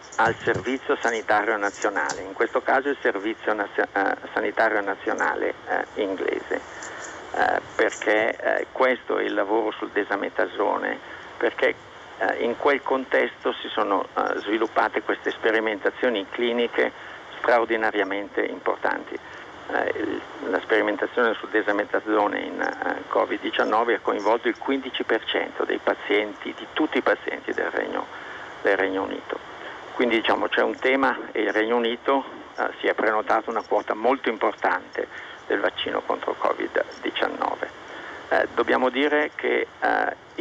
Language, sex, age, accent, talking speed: Italian, male, 50-69, native, 130 wpm